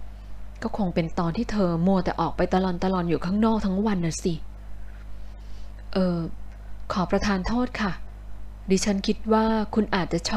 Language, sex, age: Thai, female, 20-39